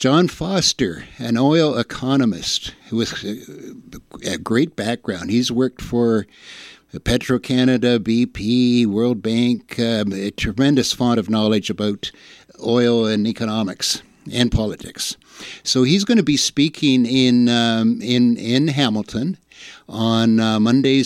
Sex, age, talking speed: male, 60-79, 125 wpm